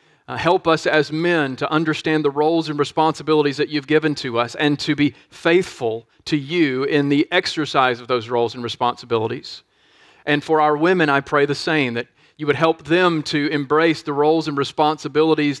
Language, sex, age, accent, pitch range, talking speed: English, male, 40-59, American, 135-160 Hz, 190 wpm